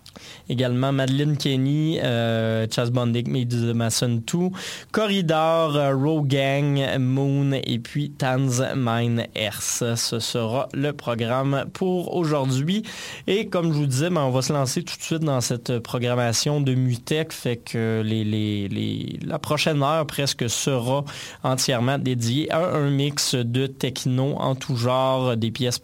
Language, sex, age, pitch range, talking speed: French, male, 20-39, 115-145 Hz, 145 wpm